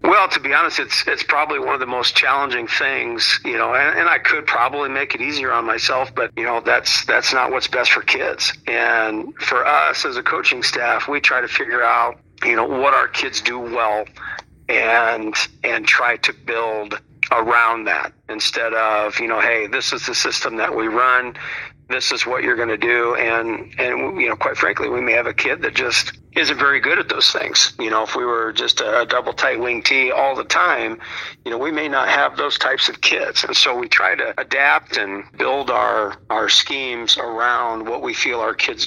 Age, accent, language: 50-69, American, English